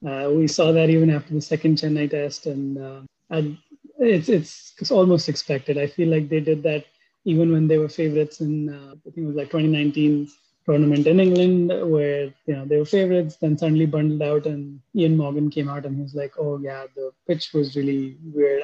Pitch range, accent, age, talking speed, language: 145-170 Hz, Indian, 20-39, 215 wpm, English